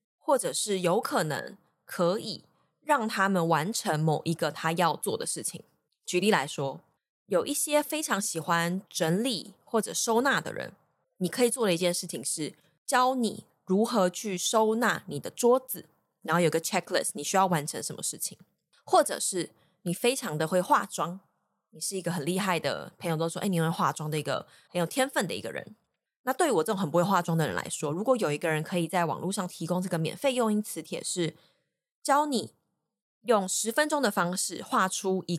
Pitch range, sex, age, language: 170-230 Hz, female, 20-39, Chinese